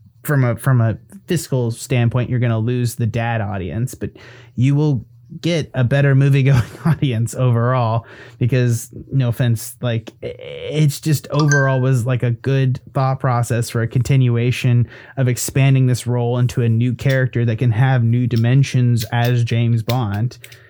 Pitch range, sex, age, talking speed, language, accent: 120-185 Hz, male, 30-49, 160 wpm, English, American